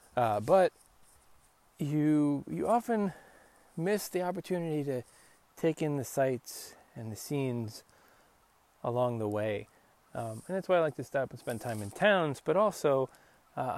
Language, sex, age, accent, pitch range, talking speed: English, male, 20-39, American, 130-160 Hz, 155 wpm